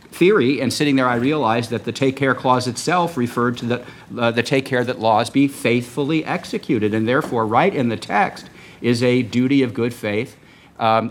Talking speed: 200 wpm